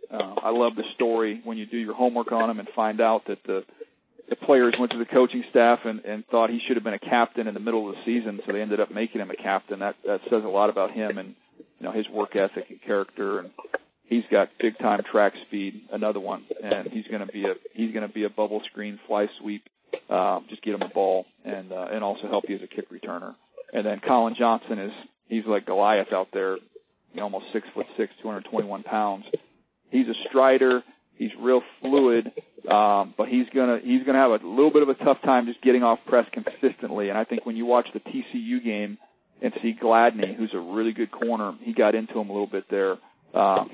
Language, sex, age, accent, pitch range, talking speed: English, male, 40-59, American, 105-130 Hz, 240 wpm